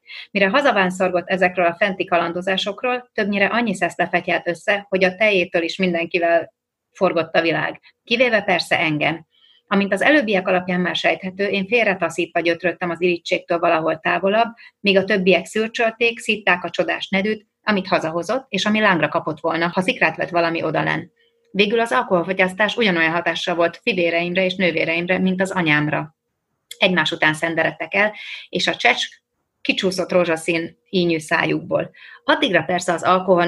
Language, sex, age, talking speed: Hungarian, female, 30-49, 145 wpm